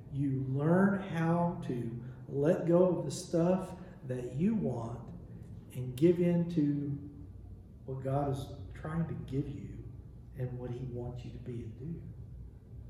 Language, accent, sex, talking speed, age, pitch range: English, American, male, 150 wpm, 50-69, 125-175 Hz